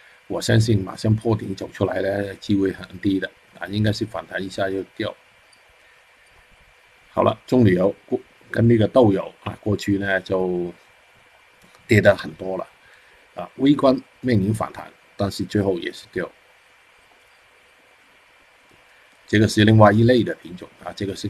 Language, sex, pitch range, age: Chinese, male, 95-110 Hz, 50-69